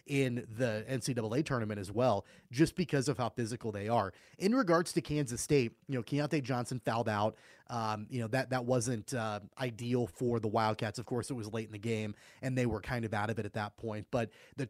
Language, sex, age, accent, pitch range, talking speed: English, male, 30-49, American, 115-140 Hz, 230 wpm